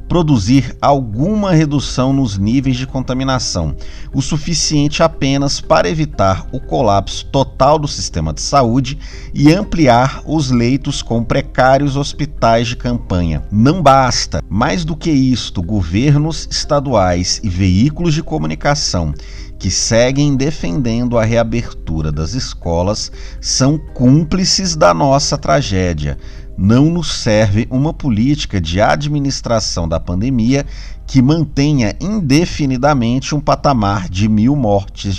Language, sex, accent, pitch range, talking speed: Portuguese, male, Brazilian, 100-145 Hz, 120 wpm